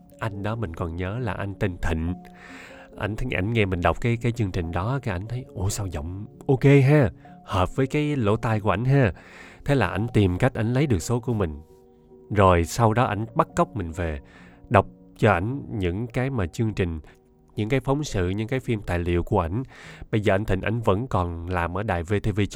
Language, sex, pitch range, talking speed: Vietnamese, male, 90-120 Hz, 225 wpm